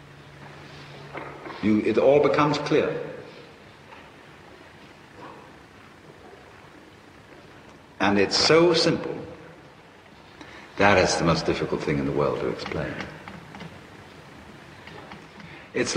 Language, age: English, 60-79